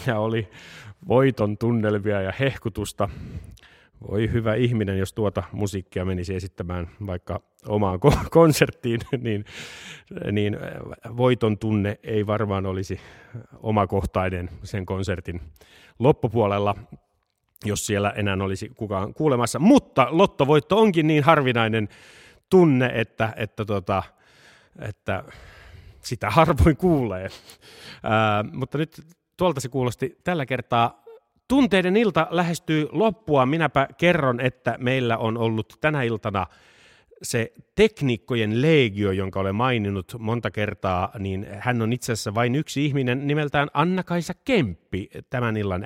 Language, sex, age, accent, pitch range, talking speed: Finnish, male, 30-49, native, 100-140 Hz, 115 wpm